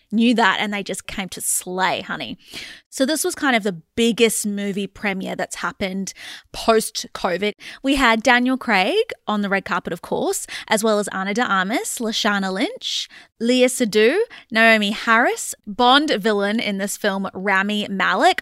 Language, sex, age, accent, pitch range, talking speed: English, female, 20-39, Australian, 195-260 Hz, 160 wpm